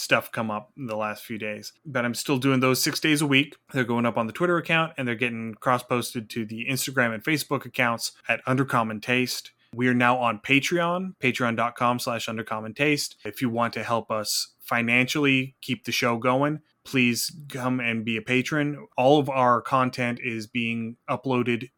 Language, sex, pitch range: English, male, 115-135 Hz